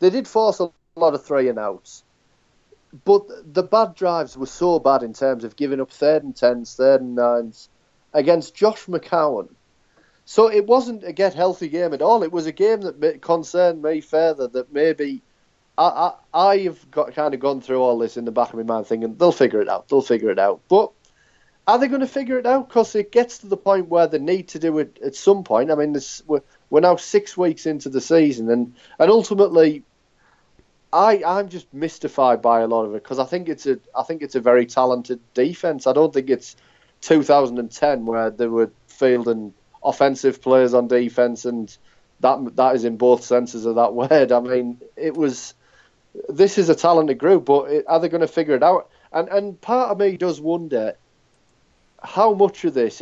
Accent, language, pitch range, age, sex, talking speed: British, English, 125-175 Hz, 30-49, male, 205 wpm